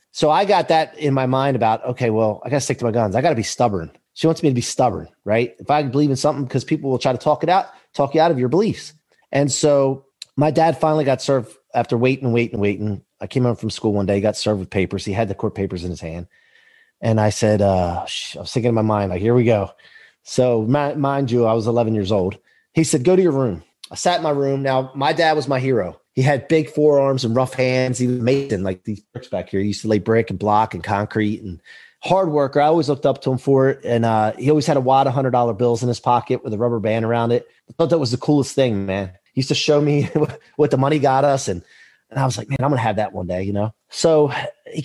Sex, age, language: male, 30-49, English